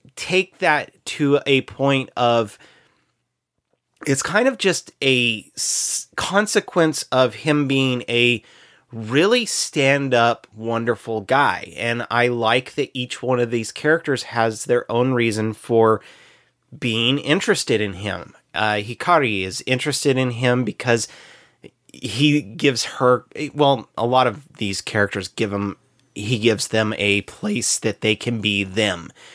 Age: 30-49